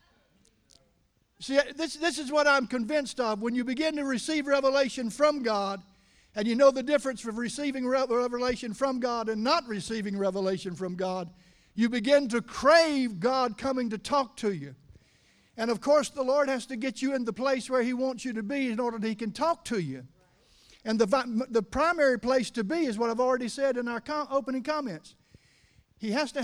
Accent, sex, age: American, male, 50-69